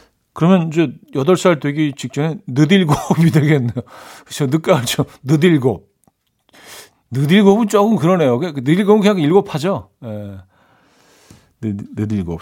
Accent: native